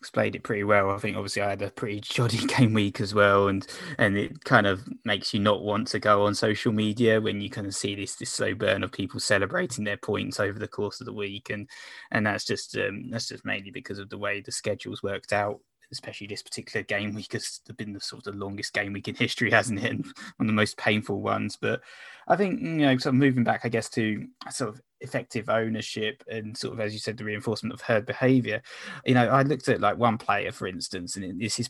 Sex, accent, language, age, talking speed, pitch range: male, British, English, 20-39, 250 wpm, 105-120 Hz